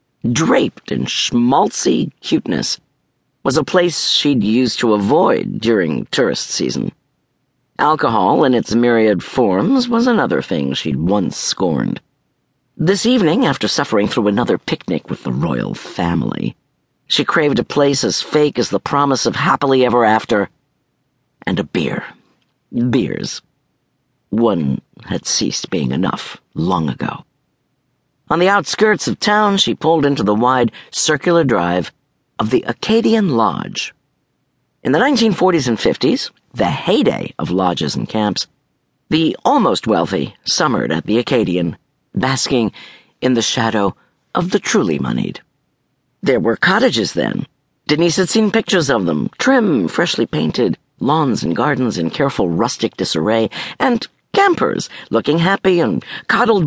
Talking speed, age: 135 wpm, 50-69